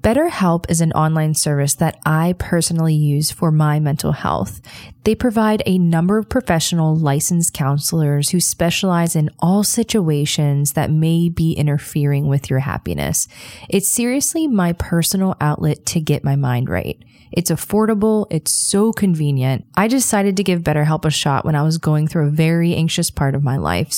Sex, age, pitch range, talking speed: female, 20-39, 150-195 Hz, 170 wpm